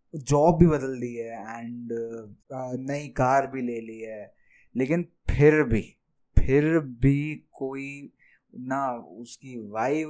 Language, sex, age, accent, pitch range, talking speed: Hindi, male, 20-39, native, 125-170 Hz, 130 wpm